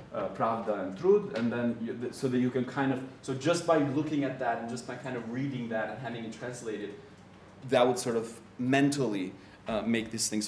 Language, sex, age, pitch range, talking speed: English, male, 30-49, 115-155 Hz, 225 wpm